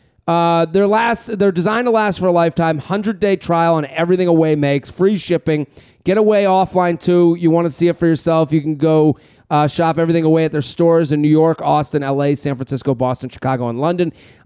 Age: 30-49